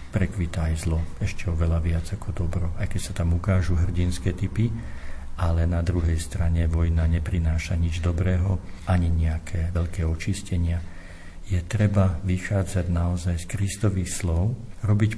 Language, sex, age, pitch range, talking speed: Slovak, male, 50-69, 85-100 Hz, 140 wpm